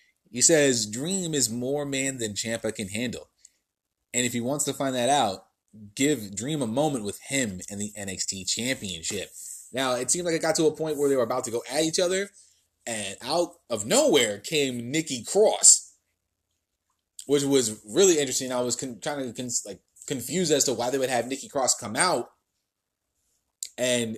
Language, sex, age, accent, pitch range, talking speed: English, male, 20-39, American, 115-145 Hz, 190 wpm